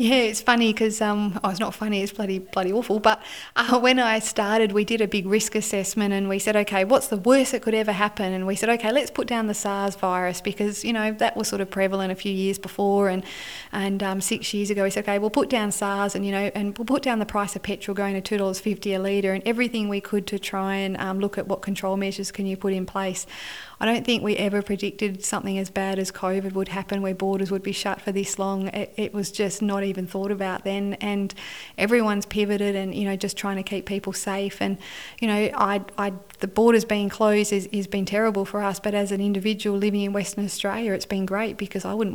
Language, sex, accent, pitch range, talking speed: English, female, Australian, 195-210 Hz, 255 wpm